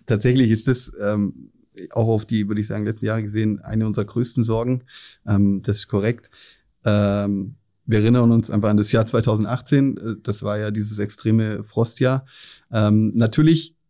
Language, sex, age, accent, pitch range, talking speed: German, male, 30-49, German, 110-125 Hz, 165 wpm